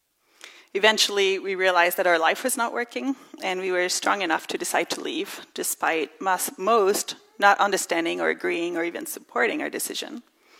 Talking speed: 165 wpm